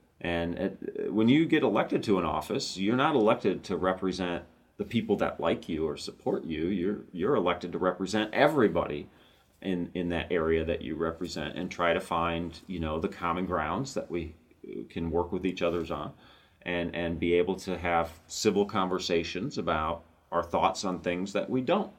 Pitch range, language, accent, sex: 85-105 Hz, English, American, male